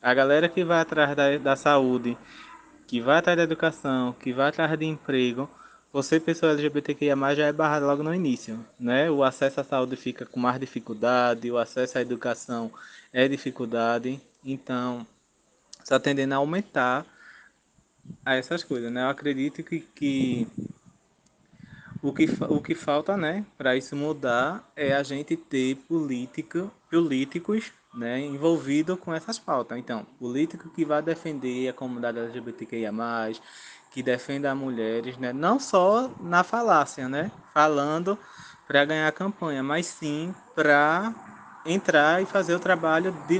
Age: 20-39